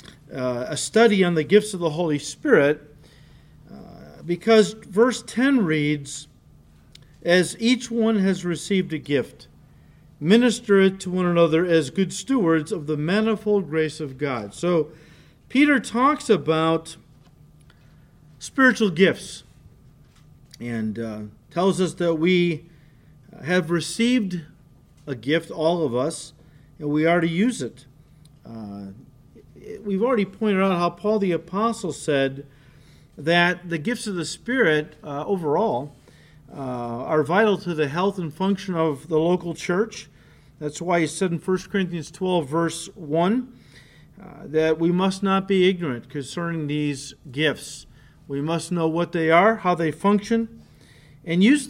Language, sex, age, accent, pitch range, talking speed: English, male, 50-69, American, 150-190 Hz, 140 wpm